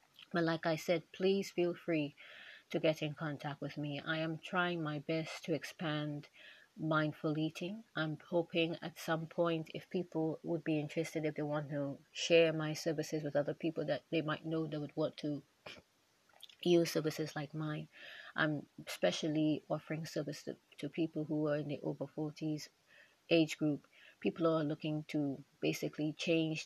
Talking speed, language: 165 wpm, English